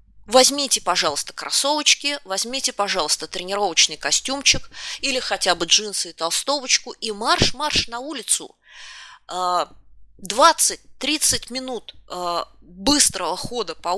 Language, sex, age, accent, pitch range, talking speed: Russian, female, 20-39, native, 195-285 Hz, 100 wpm